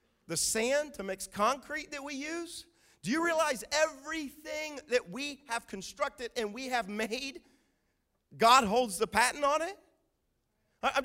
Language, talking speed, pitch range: English, 145 wpm, 215-305 Hz